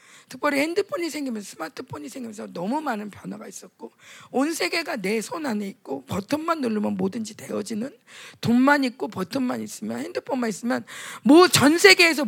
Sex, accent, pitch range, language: female, native, 225-315 Hz, Korean